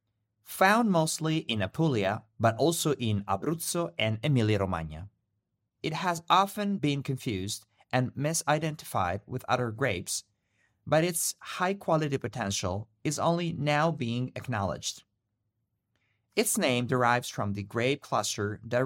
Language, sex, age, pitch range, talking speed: English, male, 30-49, 105-155 Hz, 120 wpm